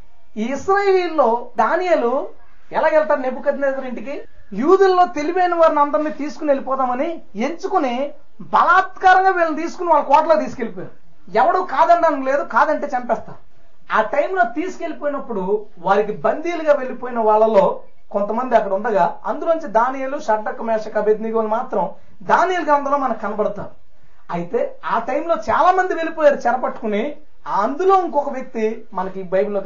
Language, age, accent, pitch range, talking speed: Telugu, 30-49, native, 215-320 Hz, 110 wpm